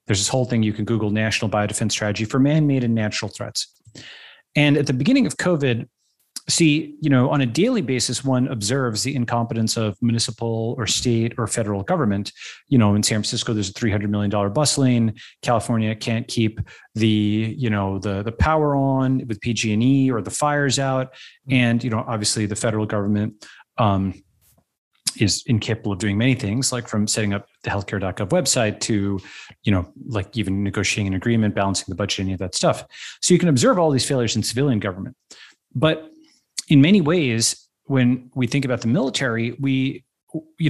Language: English